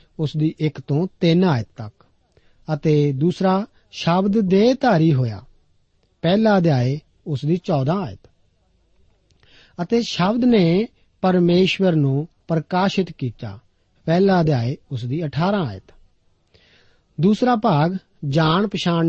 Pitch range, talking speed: 130-185 Hz, 115 wpm